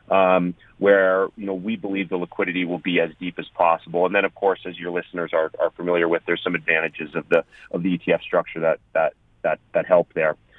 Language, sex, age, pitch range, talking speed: English, male, 40-59, 90-115 Hz, 225 wpm